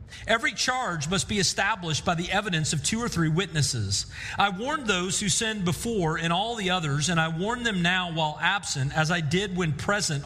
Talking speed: 205 wpm